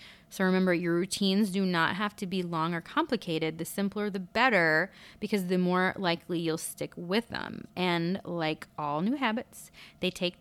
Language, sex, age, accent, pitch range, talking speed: English, female, 20-39, American, 155-185 Hz, 180 wpm